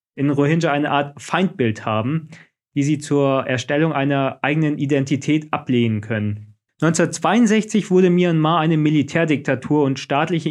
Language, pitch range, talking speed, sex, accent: German, 135-155 Hz, 125 wpm, male, German